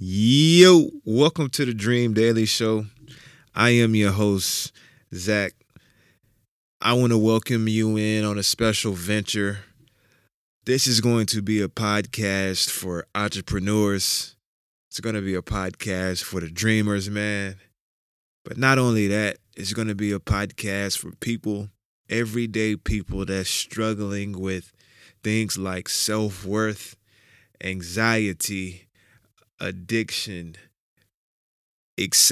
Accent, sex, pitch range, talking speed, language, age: American, male, 100-110 Hz, 120 wpm, English, 20-39